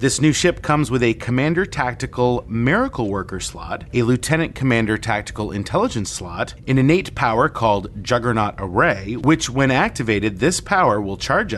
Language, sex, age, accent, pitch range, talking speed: English, male, 30-49, American, 110-145 Hz, 155 wpm